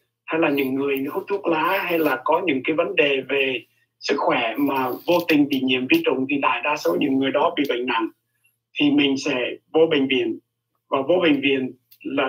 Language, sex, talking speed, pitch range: Vietnamese, male, 220 wpm, 130-165 Hz